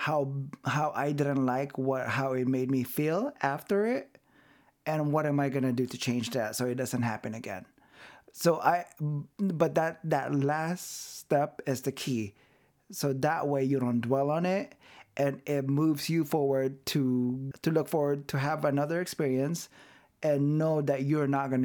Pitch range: 135-170 Hz